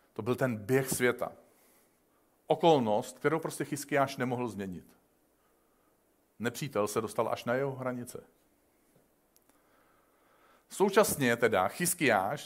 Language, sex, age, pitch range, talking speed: Czech, male, 40-59, 120-150 Hz, 100 wpm